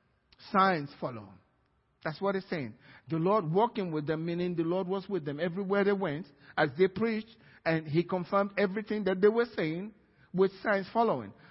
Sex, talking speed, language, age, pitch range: male, 175 wpm, English, 50-69, 145-190 Hz